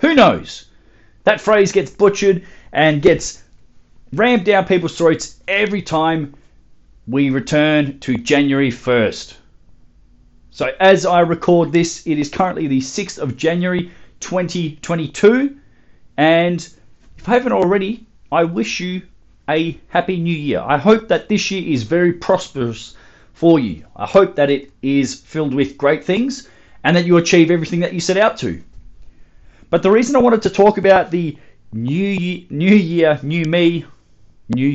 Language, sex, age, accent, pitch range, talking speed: English, male, 30-49, Australian, 130-185 Hz, 155 wpm